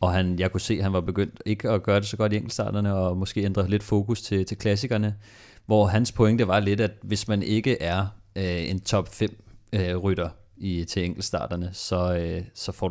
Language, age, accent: Danish, 30-49, native